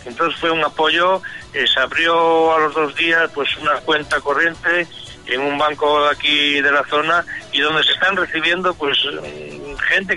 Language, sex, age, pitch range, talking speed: Spanish, male, 60-79, 130-165 Hz, 175 wpm